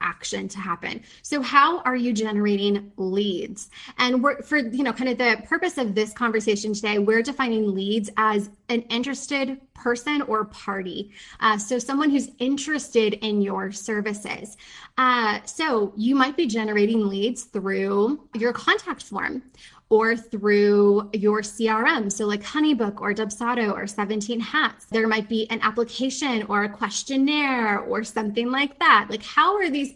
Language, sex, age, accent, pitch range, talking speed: English, female, 20-39, American, 215-275 Hz, 155 wpm